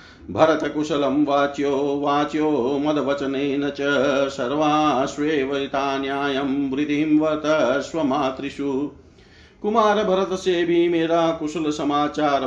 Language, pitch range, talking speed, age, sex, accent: Hindi, 130-150 Hz, 85 wpm, 50-69, male, native